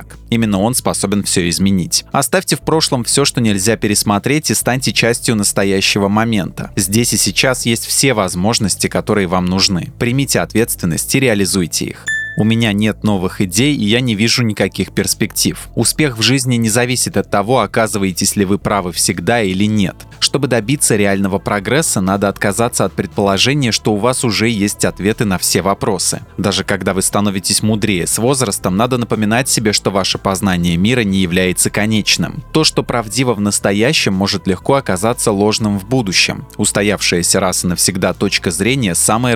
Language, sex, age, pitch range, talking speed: Russian, male, 20-39, 100-125 Hz, 165 wpm